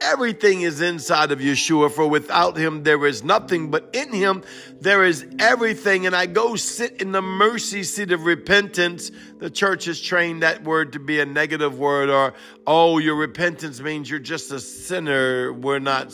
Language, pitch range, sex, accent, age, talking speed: English, 155-200 Hz, male, American, 50-69, 180 wpm